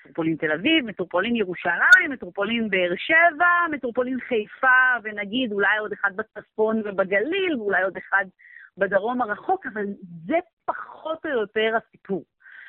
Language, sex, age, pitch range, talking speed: Hebrew, female, 30-49, 190-255 Hz, 130 wpm